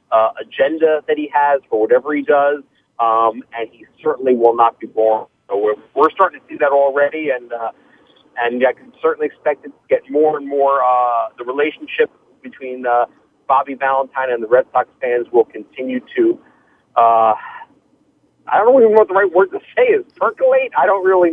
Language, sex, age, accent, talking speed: English, male, 40-59, American, 195 wpm